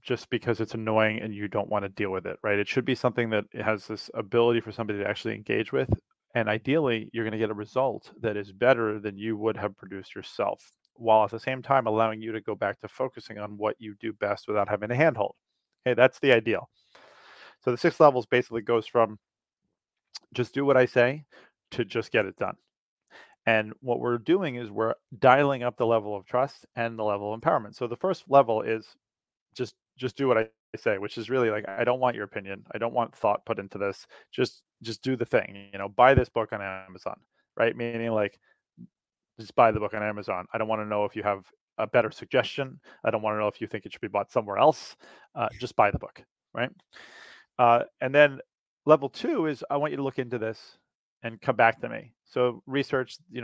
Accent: American